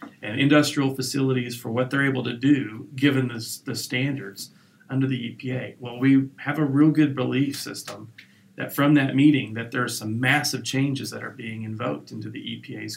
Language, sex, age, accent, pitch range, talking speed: English, male, 40-59, American, 120-135 Hz, 190 wpm